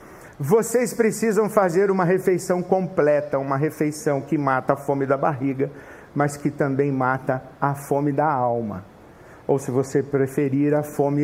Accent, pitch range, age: Brazilian, 150-225 Hz, 50-69